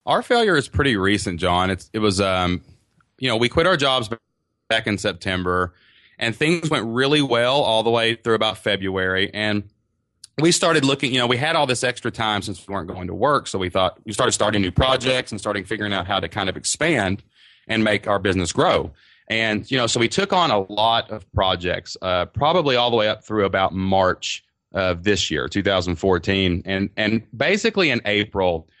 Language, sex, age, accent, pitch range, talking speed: English, male, 30-49, American, 95-115 Hz, 205 wpm